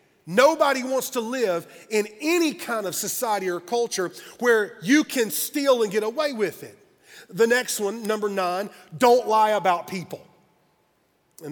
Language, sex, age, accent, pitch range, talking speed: English, male, 40-59, American, 185-230 Hz, 155 wpm